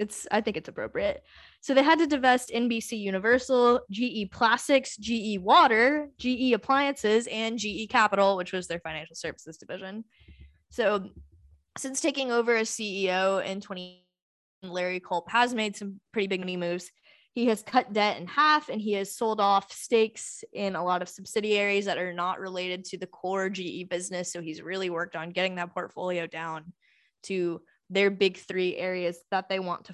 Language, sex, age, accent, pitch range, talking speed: English, female, 10-29, American, 180-230 Hz, 175 wpm